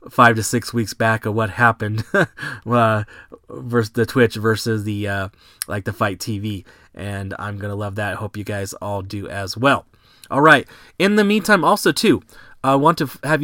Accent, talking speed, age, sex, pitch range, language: American, 200 wpm, 20-39, male, 110-135 Hz, English